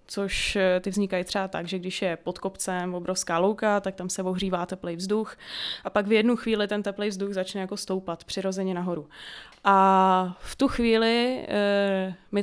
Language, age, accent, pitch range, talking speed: Czech, 20-39, native, 185-205 Hz, 175 wpm